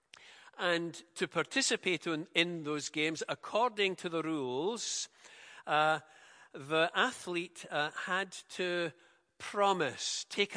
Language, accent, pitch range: English, British, 155-190 Hz